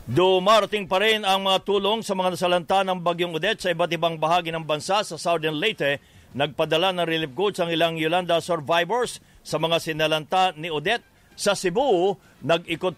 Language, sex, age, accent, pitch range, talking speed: English, male, 50-69, Filipino, 155-185 Hz, 170 wpm